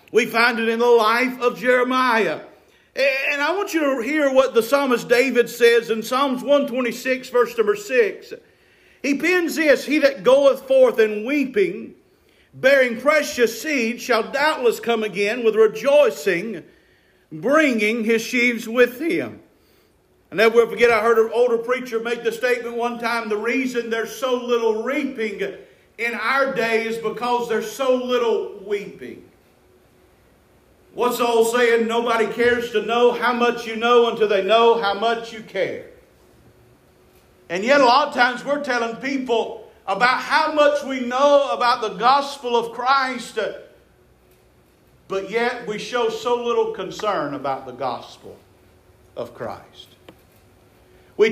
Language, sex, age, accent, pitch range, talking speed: English, male, 50-69, American, 230-275 Hz, 150 wpm